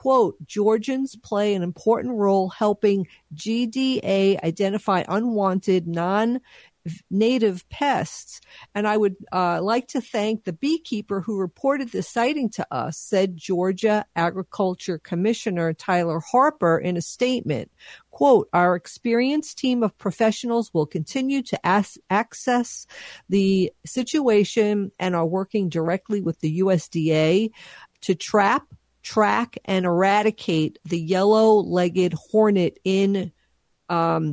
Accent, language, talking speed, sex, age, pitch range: American, English, 115 wpm, female, 50-69, 180-220 Hz